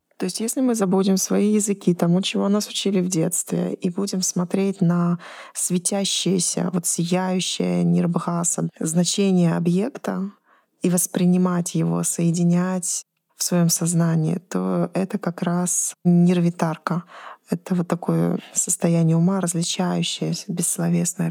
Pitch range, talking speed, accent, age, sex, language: 175-200 Hz, 120 wpm, native, 20-39, female, Russian